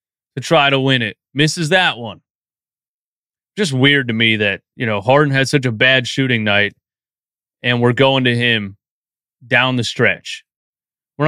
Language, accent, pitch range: English, American, 120-150 Hz